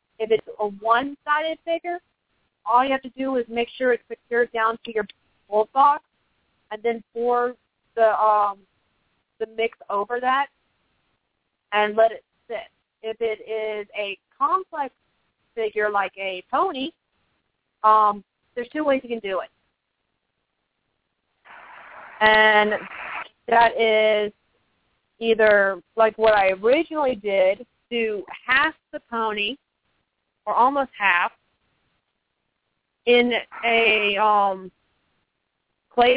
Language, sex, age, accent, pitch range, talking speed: English, female, 30-49, American, 215-275 Hz, 115 wpm